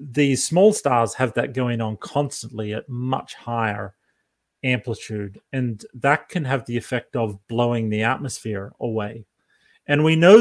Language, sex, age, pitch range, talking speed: English, male, 30-49, 120-150 Hz, 150 wpm